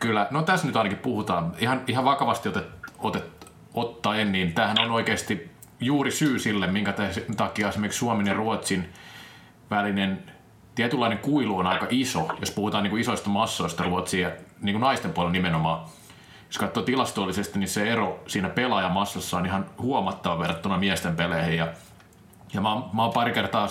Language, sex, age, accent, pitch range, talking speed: Finnish, male, 30-49, native, 95-130 Hz, 160 wpm